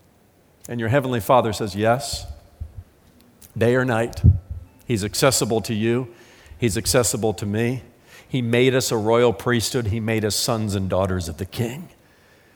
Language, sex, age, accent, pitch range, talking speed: English, male, 50-69, American, 100-125 Hz, 155 wpm